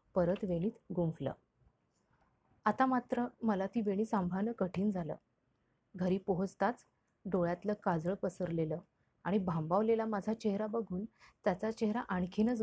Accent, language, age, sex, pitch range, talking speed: native, Marathi, 30-49, female, 180-225 Hz, 115 wpm